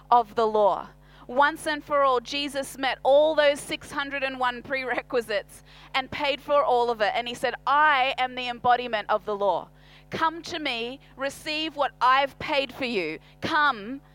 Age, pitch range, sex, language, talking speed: 30-49, 240-290 Hz, female, English, 180 wpm